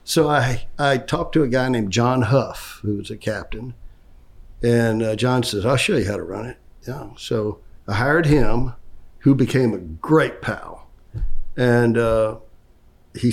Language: English